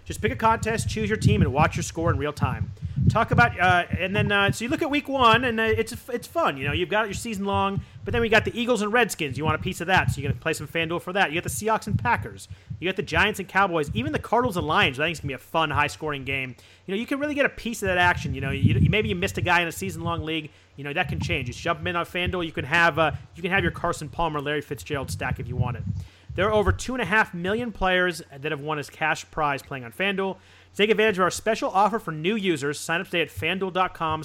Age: 30-49